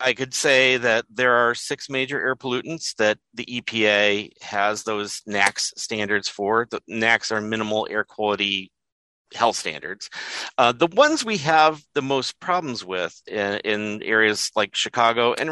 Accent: American